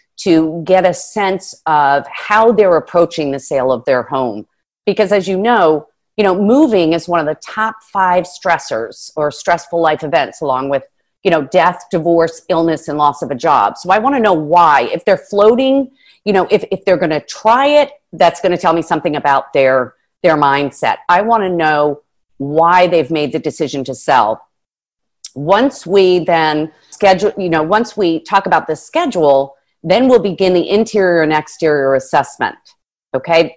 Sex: female